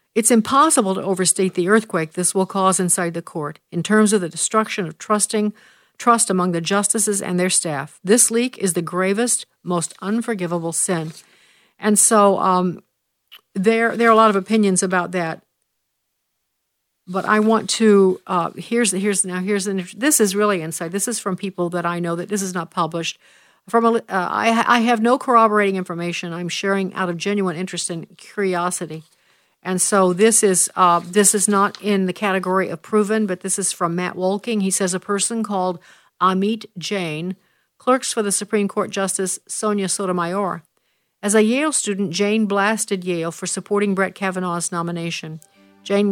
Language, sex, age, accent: English, female, 50-69, American